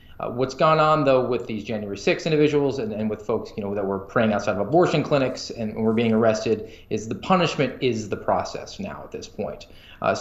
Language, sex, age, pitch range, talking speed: English, male, 20-39, 110-140 Hz, 225 wpm